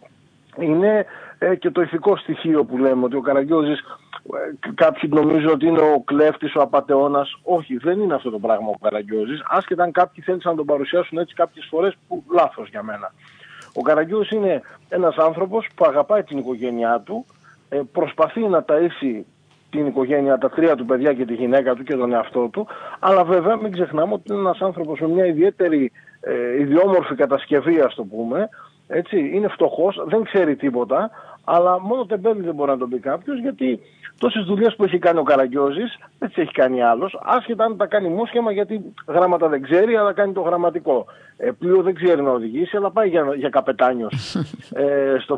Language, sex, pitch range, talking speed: Greek, male, 135-200 Hz, 180 wpm